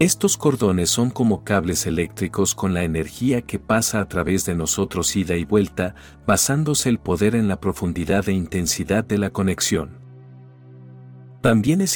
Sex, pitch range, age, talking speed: male, 90-115 Hz, 50-69, 155 wpm